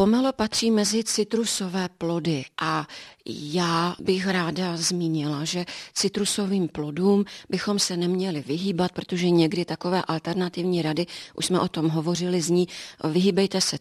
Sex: female